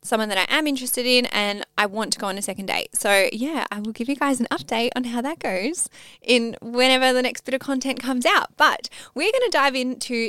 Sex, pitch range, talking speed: female, 205-260 Hz, 250 wpm